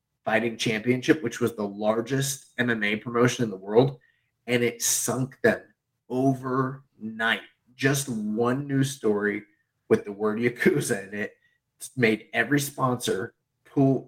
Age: 30-49